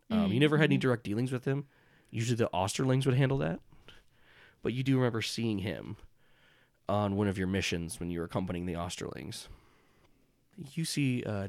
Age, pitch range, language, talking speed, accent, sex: 20-39, 100-130 Hz, English, 185 wpm, American, male